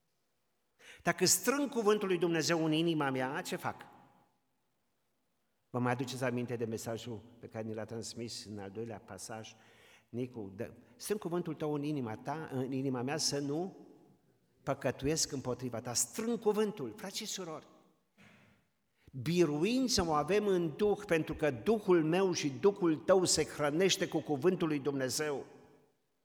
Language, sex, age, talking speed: Romanian, male, 50-69, 145 wpm